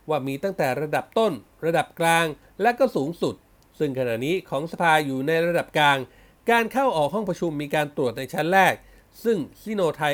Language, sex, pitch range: Thai, male, 145-200 Hz